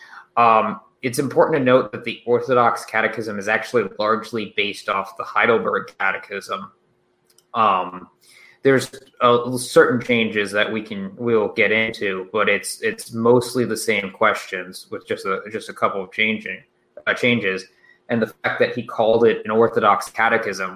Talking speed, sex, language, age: 160 wpm, male, English, 20-39